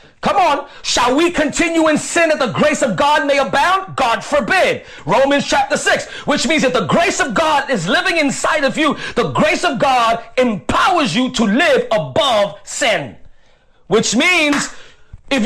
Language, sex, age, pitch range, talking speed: English, male, 40-59, 250-340 Hz, 170 wpm